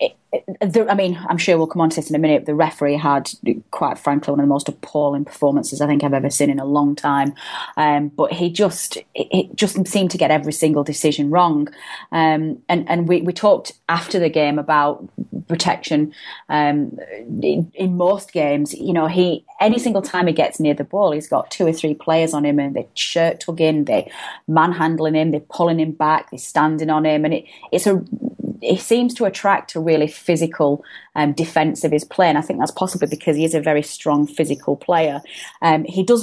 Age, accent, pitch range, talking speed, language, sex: 30-49, British, 150-185 Hz, 210 wpm, English, female